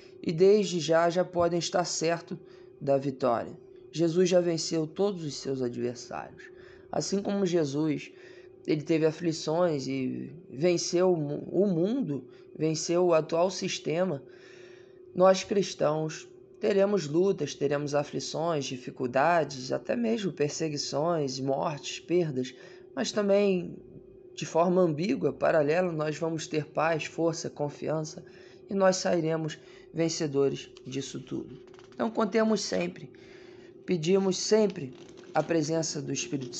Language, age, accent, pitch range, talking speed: Portuguese, 20-39, Brazilian, 145-190 Hz, 115 wpm